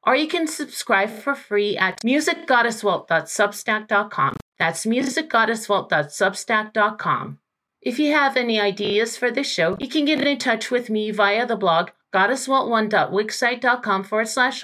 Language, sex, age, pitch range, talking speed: English, female, 40-59, 200-255 Hz, 130 wpm